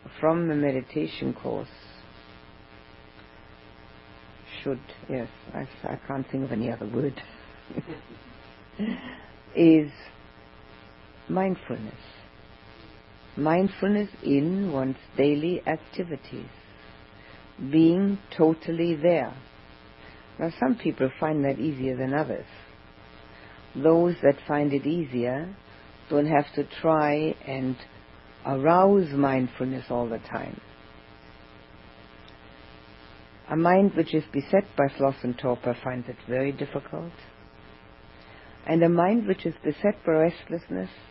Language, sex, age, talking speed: English, female, 60-79, 100 wpm